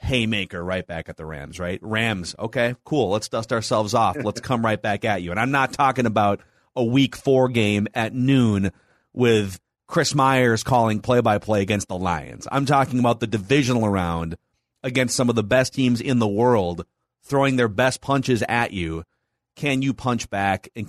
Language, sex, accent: English, male, American